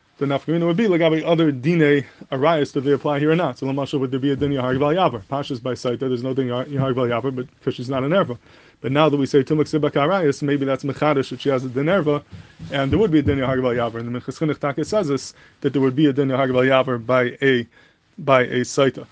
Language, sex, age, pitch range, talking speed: English, male, 20-39, 130-150 Hz, 240 wpm